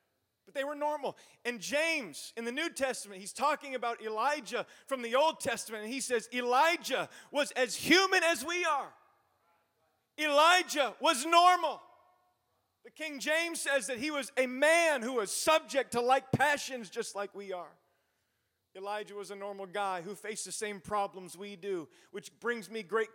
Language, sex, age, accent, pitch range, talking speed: English, male, 30-49, American, 185-265 Hz, 170 wpm